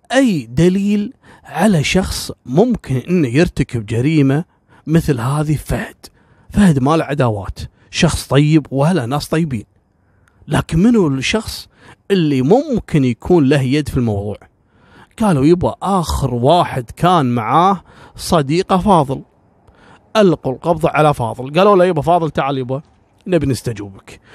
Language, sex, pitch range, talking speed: Arabic, male, 130-180 Hz, 120 wpm